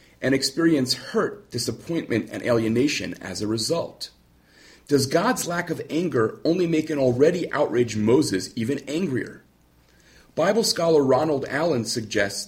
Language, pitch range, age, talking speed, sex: English, 115-155 Hz, 40-59, 130 wpm, male